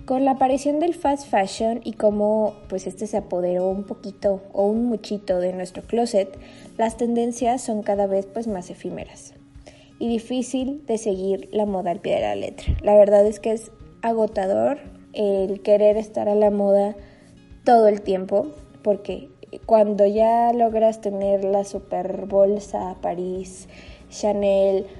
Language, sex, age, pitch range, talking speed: Spanish, female, 20-39, 200-240 Hz, 150 wpm